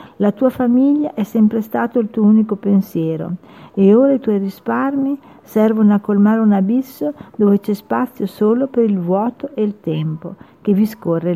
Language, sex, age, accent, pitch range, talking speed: Italian, female, 50-69, native, 190-230 Hz, 175 wpm